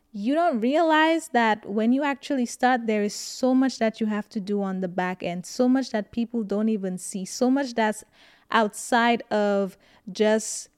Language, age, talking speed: English, 20-39, 190 wpm